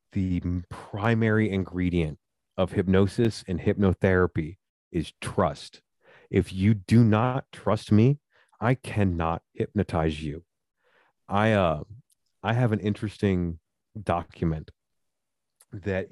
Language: English